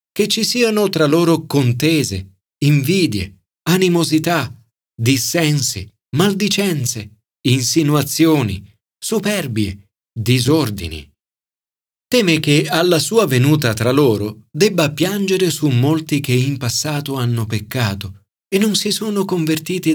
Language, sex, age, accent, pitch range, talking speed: Italian, male, 40-59, native, 110-170 Hz, 100 wpm